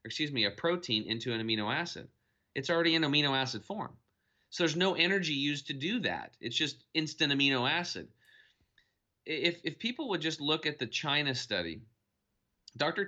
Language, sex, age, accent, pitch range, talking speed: English, male, 30-49, American, 110-140 Hz, 175 wpm